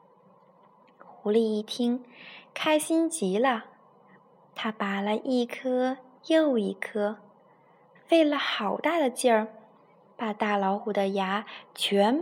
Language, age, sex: Chinese, 20-39, female